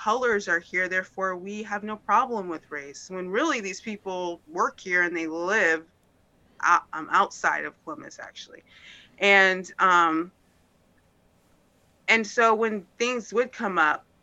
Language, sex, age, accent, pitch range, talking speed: English, female, 20-39, American, 175-205 Hz, 135 wpm